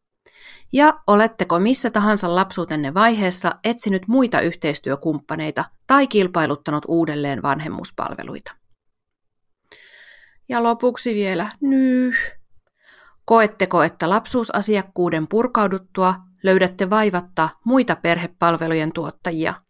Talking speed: 80 wpm